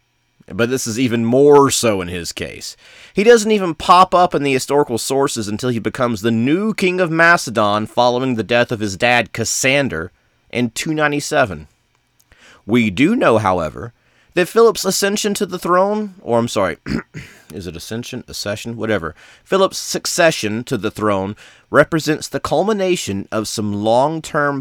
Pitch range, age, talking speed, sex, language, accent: 105-160 Hz, 30-49, 155 wpm, male, English, American